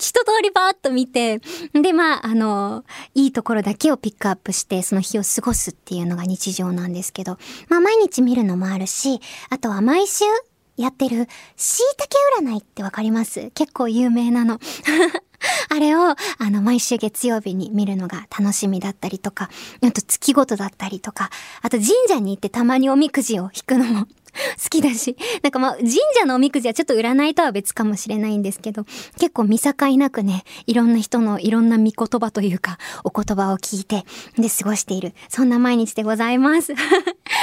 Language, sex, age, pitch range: Japanese, male, 20-39, 215-290 Hz